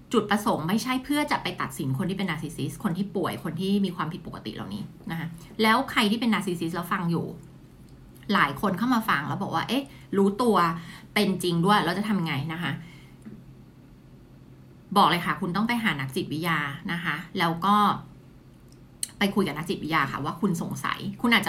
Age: 30-49